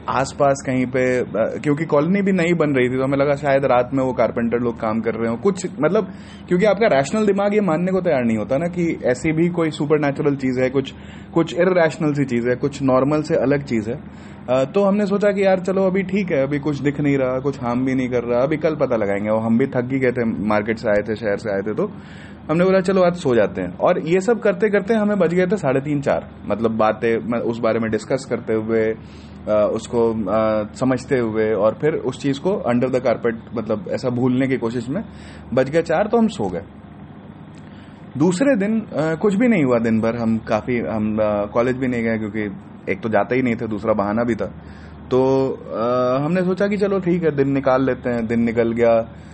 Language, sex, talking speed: Hindi, male, 225 wpm